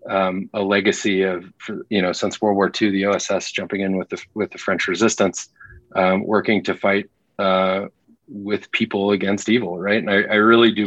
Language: English